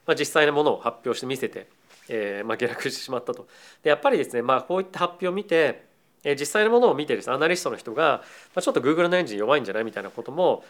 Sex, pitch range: male, 130-180 Hz